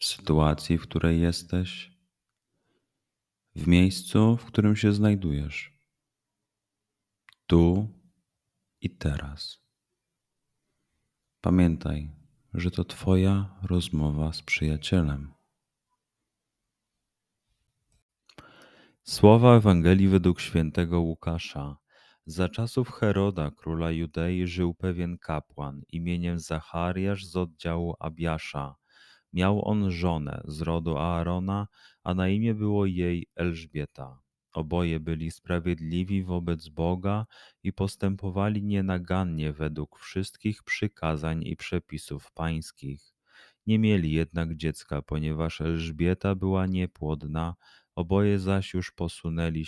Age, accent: 30-49, native